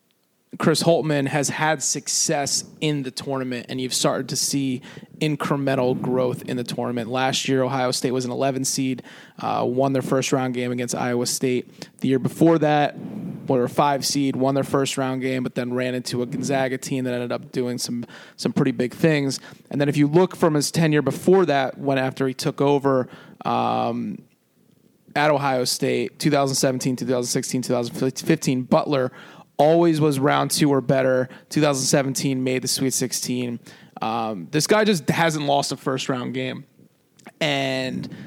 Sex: male